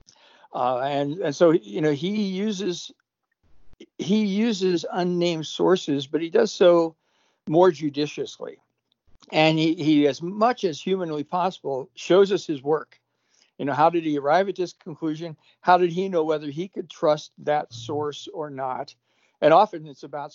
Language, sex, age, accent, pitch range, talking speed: English, male, 60-79, American, 145-185 Hz, 160 wpm